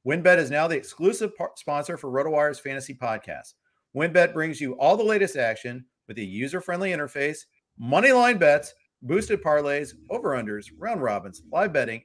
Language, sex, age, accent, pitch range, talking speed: English, male, 40-59, American, 135-190 Hz, 160 wpm